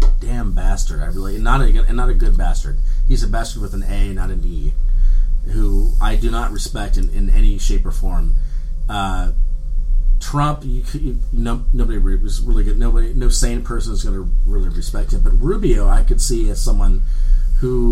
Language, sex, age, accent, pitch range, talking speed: English, male, 30-49, American, 90-125 Hz, 190 wpm